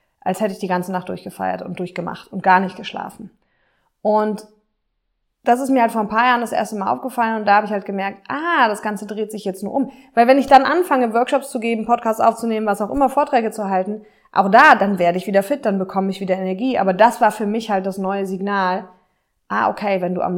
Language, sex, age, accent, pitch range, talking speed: German, female, 20-39, German, 185-230 Hz, 240 wpm